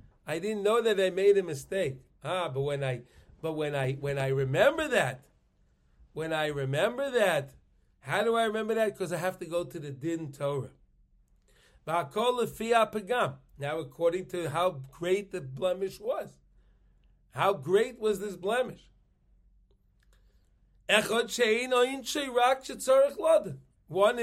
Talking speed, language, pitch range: 125 wpm, English, 135-215 Hz